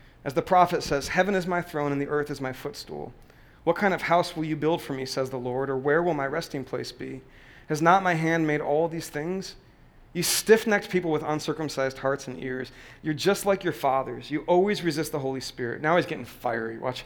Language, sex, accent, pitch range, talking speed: English, male, American, 135-170 Hz, 230 wpm